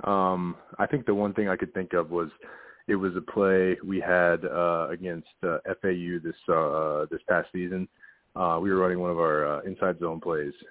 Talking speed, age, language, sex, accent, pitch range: 205 wpm, 30-49, English, male, American, 85-95 Hz